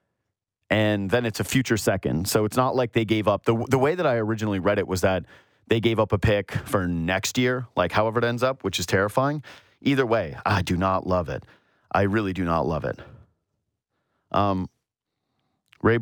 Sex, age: male, 30-49